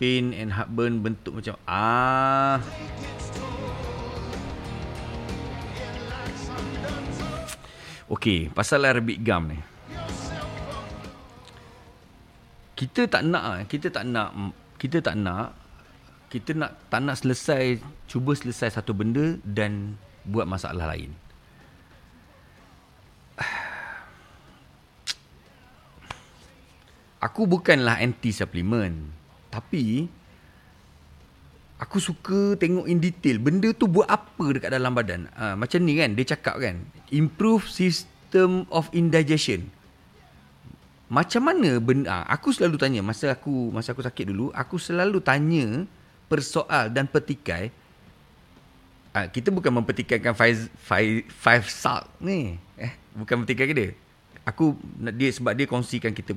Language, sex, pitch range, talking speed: Malay, male, 105-150 Hz, 105 wpm